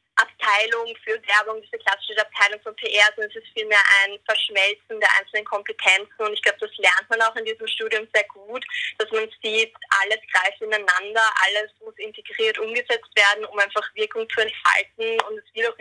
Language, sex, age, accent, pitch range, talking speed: German, female, 20-39, German, 205-320 Hz, 185 wpm